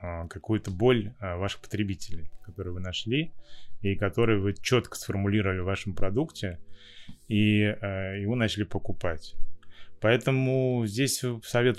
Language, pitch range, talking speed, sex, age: Russian, 95-115 Hz, 110 wpm, male, 20-39